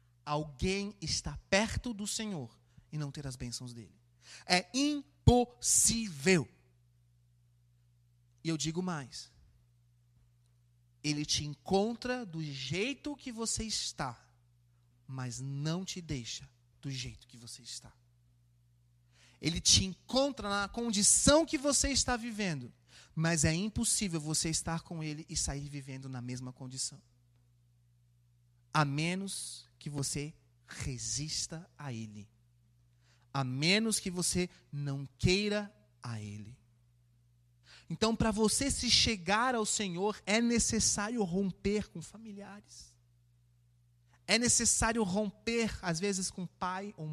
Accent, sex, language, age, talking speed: Brazilian, male, Portuguese, 30-49, 115 wpm